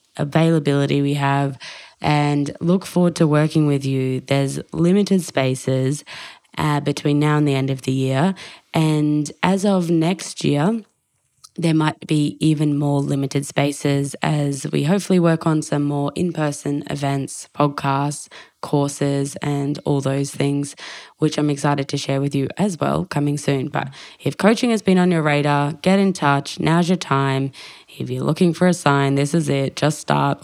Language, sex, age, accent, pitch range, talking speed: English, female, 20-39, Australian, 140-155 Hz, 170 wpm